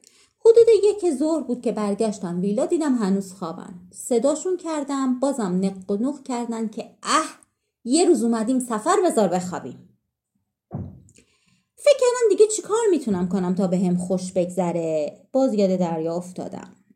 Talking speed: 140 wpm